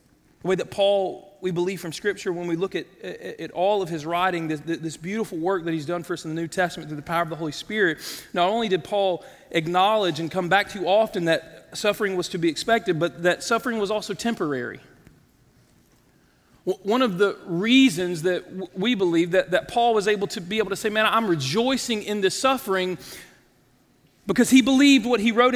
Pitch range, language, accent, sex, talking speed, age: 190-270 Hz, English, American, male, 205 wpm, 40-59